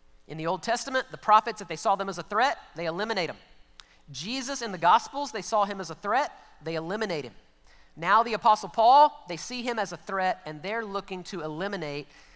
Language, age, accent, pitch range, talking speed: English, 30-49, American, 175-225 Hz, 215 wpm